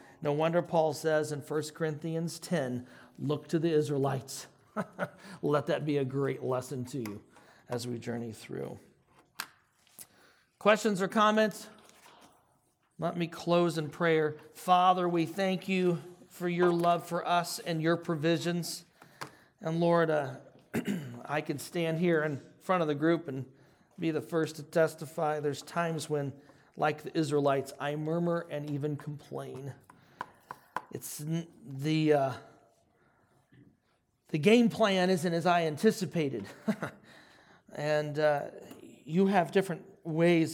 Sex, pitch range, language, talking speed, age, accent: male, 140-170 Hz, English, 130 wpm, 40-59, American